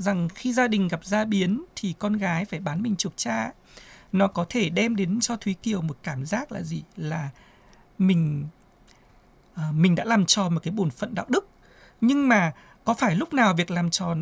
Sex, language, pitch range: male, Vietnamese, 185-250 Hz